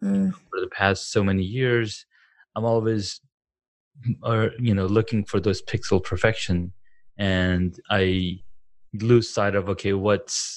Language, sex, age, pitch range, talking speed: English, male, 20-39, 95-115 Hz, 135 wpm